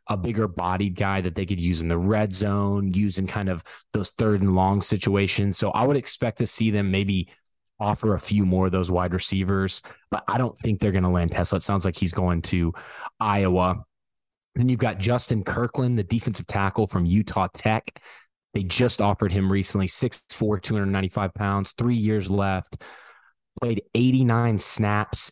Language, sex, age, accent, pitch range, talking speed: English, male, 20-39, American, 95-110 Hz, 195 wpm